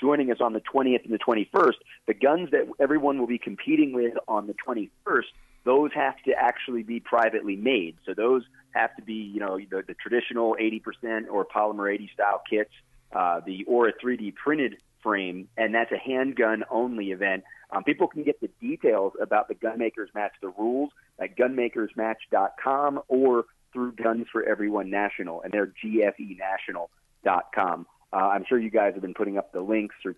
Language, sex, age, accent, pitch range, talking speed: English, male, 30-49, American, 100-120 Hz, 175 wpm